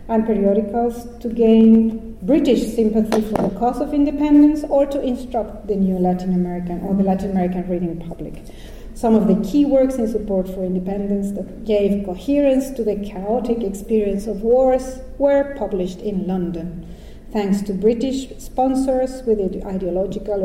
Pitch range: 185-235 Hz